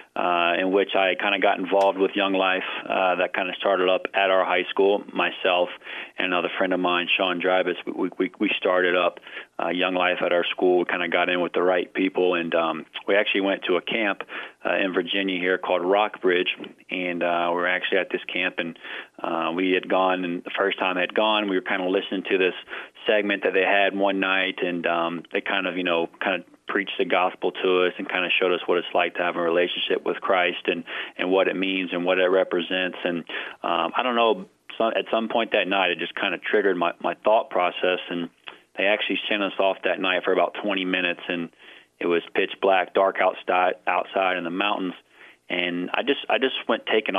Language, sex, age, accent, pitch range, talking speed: English, male, 30-49, American, 90-95 Hz, 230 wpm